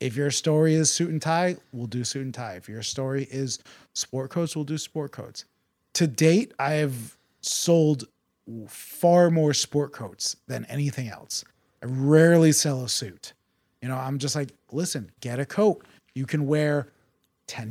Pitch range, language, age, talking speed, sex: 130-170 Hz, English, 30-49, 175 wpm, male